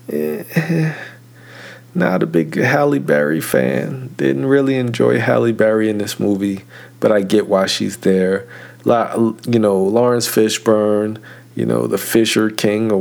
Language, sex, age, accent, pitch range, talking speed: English, male, 40-59, American, 95-115 Hz, 150 wpm